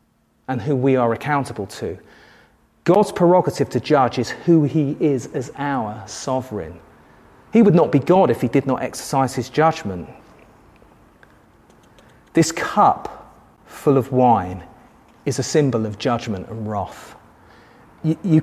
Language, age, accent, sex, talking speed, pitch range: English, 40-59, British, male, 140 wpm, 115-135 Hz